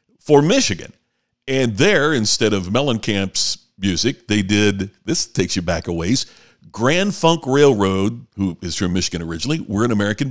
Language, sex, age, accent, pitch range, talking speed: English, male, 50-69, American, 110-170 Hz, 155 wpm